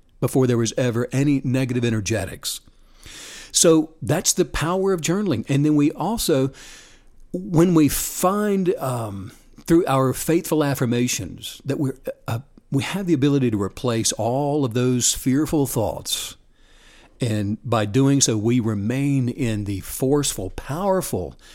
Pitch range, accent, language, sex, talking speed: 115-165 Hz, American, English, male, 135 wpm